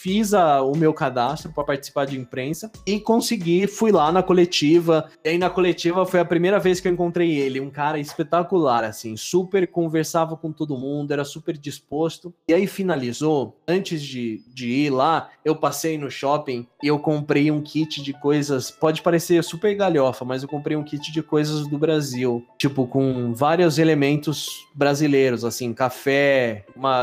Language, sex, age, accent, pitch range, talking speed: Portuguese, male, 20-39, Brazilian, 135-170 Hz, 175 wpm